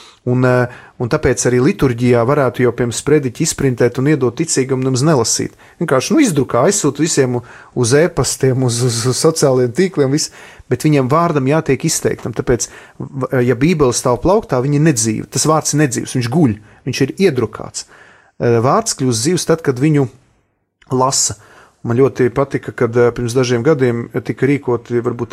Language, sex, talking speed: English, male, 150 wpm